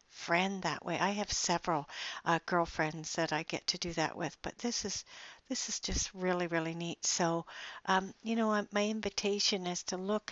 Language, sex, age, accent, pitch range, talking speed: English, female, 60-79, American, 175-220 Hz, 190 wpm